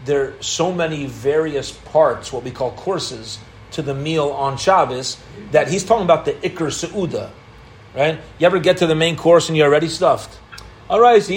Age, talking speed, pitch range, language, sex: 30-49, 200 wpm, 145-195 Hz, English, male